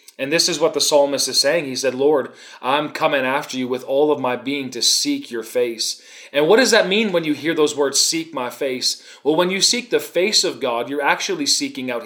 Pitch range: 135-160 Hz